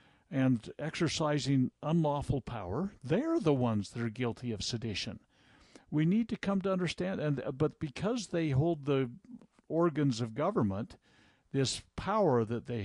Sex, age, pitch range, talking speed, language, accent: male, 60-79, 120-165 Hz, 140 wpm, English, American